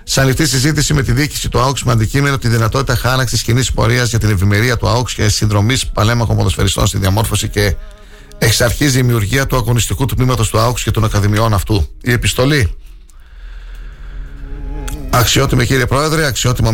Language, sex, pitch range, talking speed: Greek, male, 100-125 Hz, 165 wpm